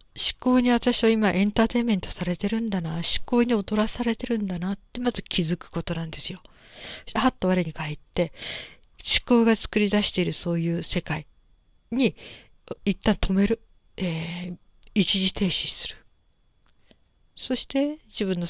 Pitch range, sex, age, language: 165-200 Hz, female, 50-69, Japanese